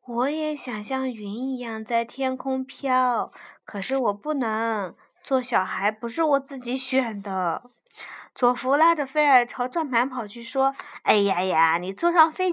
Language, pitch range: Chinese, 215-285 Hz